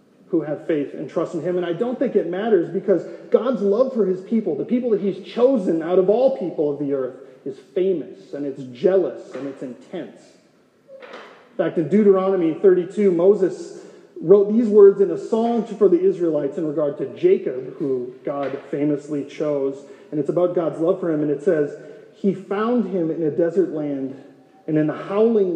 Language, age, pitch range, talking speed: English, 30-49, 160-210 Hz, 195 wpm